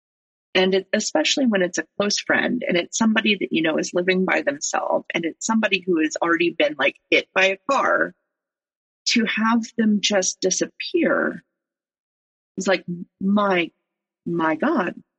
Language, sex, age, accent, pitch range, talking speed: English, female, 40-59, American, 175-240 Hz, 155 wpm